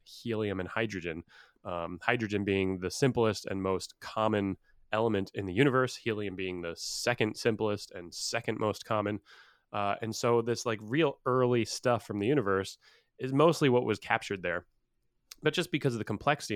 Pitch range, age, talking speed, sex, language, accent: 100-130 Hz, 20-39, 170 wpm, male, English, American